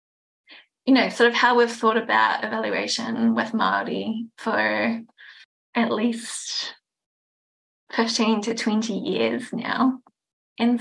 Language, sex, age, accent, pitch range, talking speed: English, female, 20-39, Australian, 205-235 Hz, 110 wpm